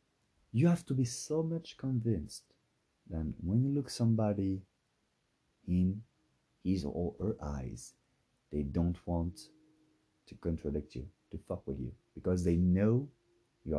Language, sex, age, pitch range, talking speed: English, male, 30-49, 80-115 Hz, 135 wpm